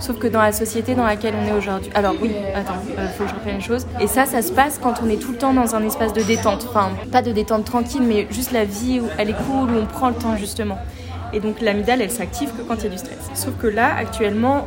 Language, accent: French, French